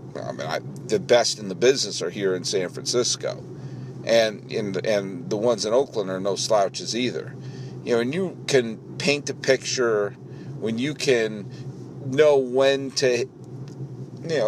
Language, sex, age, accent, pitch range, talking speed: English, male, 50-69, American, 120-155 Hz, 160 wpm